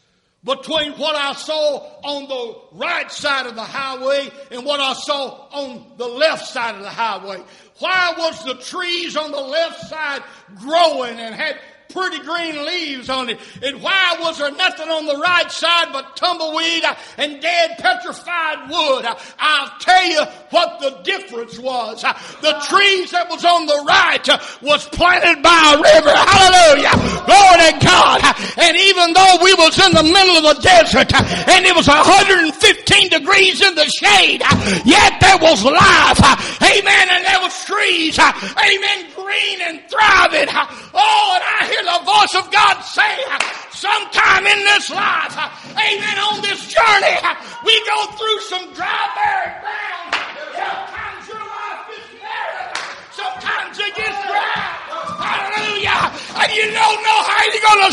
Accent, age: American, 60-79